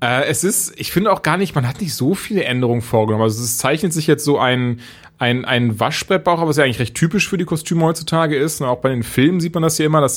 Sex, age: male, 30-49